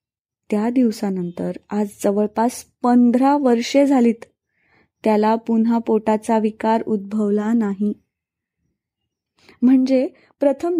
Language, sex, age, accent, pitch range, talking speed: Marathi, female, 20-39, native, 215-280 Hz, 85 wpm